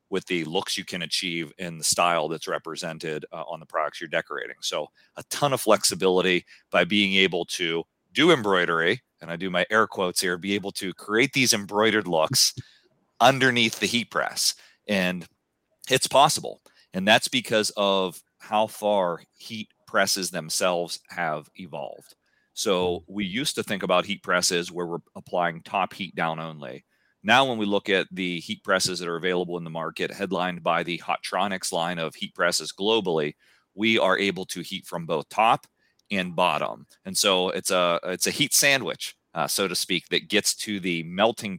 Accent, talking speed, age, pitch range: American, 180 wpm, 40-59, 85-100 Hz